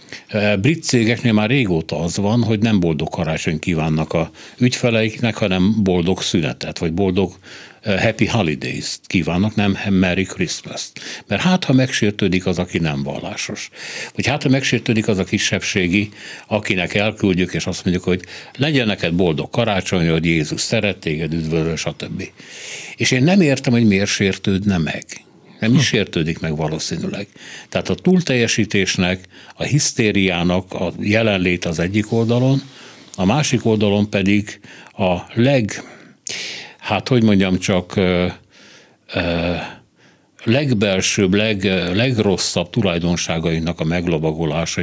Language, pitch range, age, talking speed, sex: Hungarian, 90-115 Hz, 60-79, 130 wpm, male